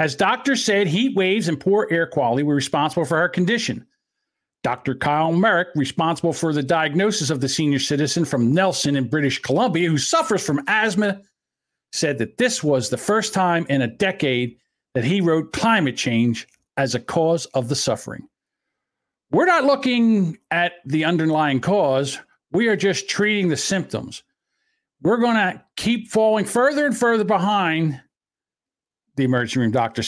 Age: 50-69